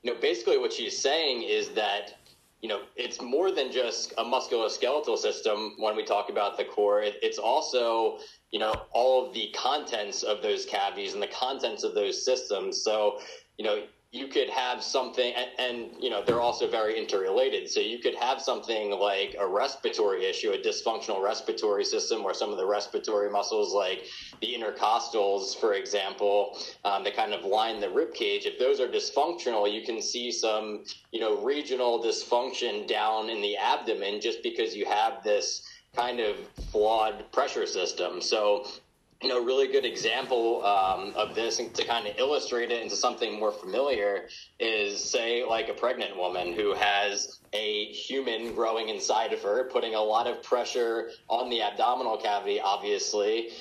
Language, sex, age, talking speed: English, male, 20-39, 175 wpm